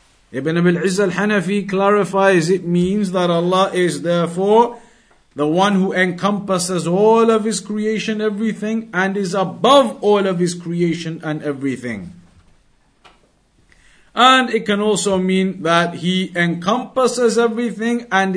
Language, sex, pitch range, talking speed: English, male, 165-210 Hz, 125 wpm